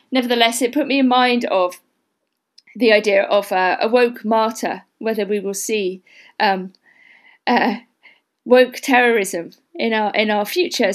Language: English